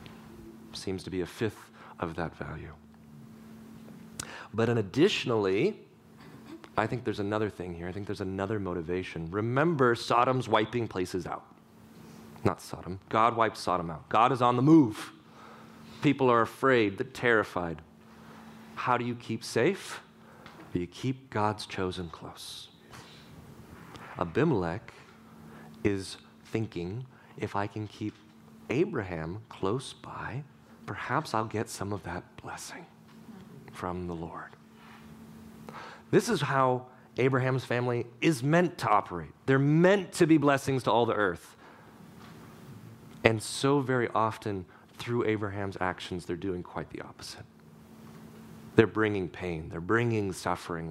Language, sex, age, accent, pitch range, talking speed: English, male, 30-49, American, 85-120 Hz, 130 wpm